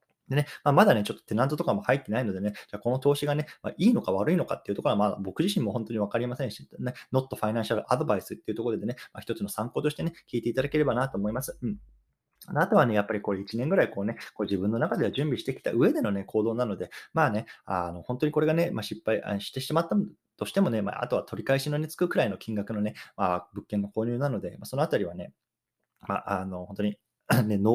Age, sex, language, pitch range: 20-39, male, Japanese, 105-145 Hz